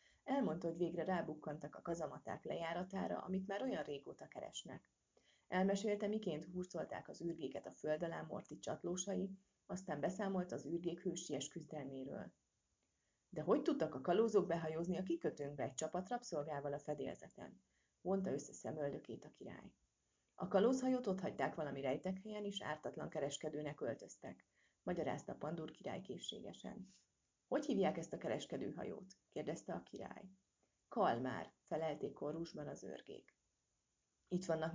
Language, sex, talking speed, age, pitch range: Hungarian, female, 135 wpm, 30-49, 150-195 Hz